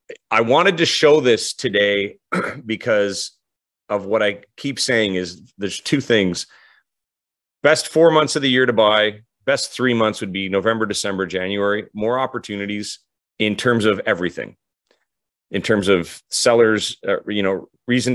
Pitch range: 95-125 Hz